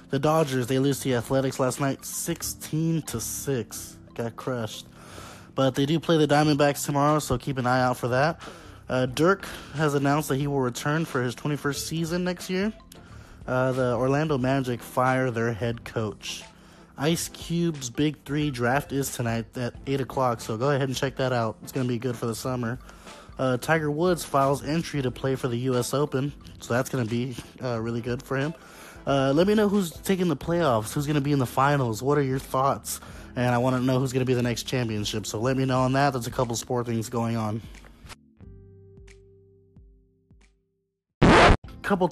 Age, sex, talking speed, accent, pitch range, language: 20-39, male, 195 wpm, American, 115-145 Hz, English